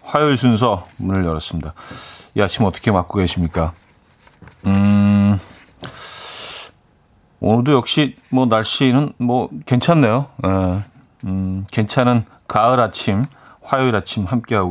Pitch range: 100-140 Hz